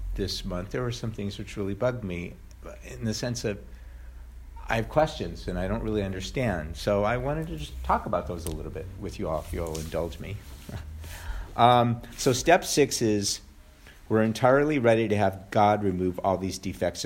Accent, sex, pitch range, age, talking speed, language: American, male, 90-120 Hz, 50-69, 195 wpm, English